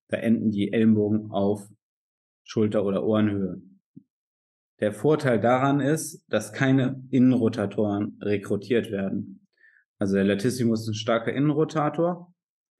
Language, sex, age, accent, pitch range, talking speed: German, male, 20-39, German, 105-125 Hz, 115 wpm